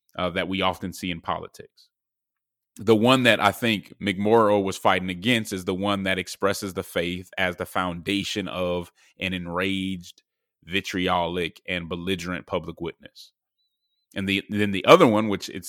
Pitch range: 90-115 Hz